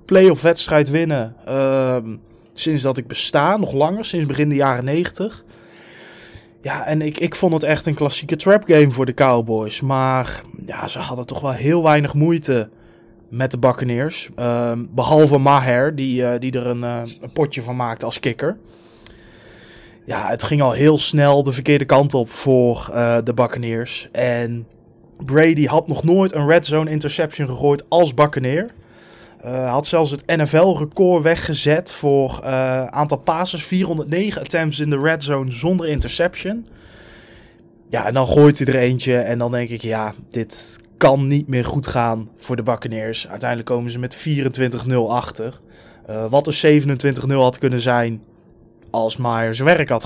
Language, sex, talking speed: Dutch, male, 170 wpm